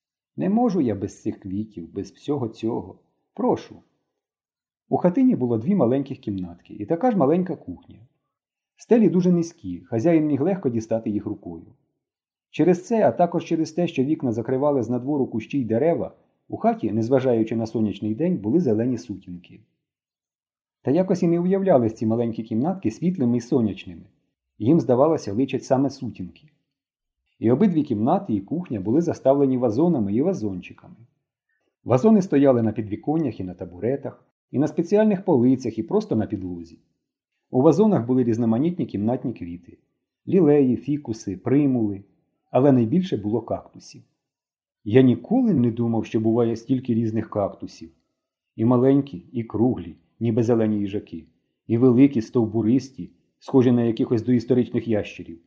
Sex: male